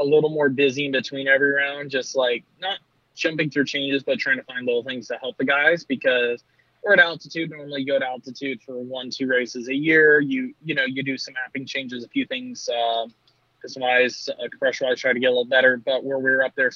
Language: English